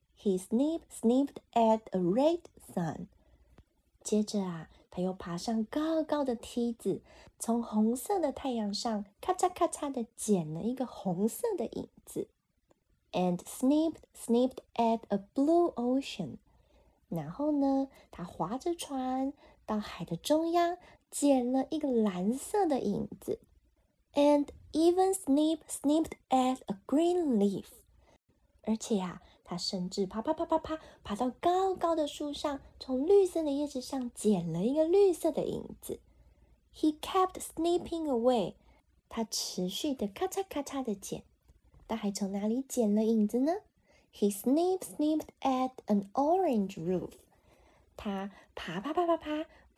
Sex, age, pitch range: female, 10-29, 215-315 Hz